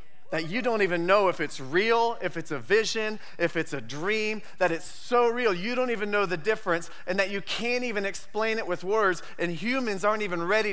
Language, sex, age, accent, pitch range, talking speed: English, male, 30-49, American, 175-220 Hz, 225 wpm